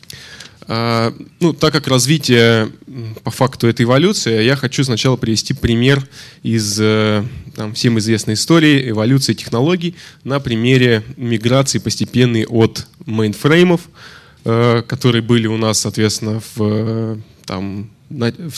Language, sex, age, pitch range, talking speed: Russian, male, 20-39, 110-130 Hz, 110 wpm